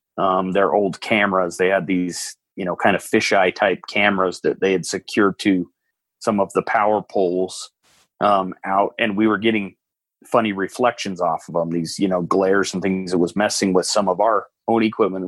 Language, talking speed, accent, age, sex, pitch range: English, 195 wpm, American, 30-49, male, 95-105 Hz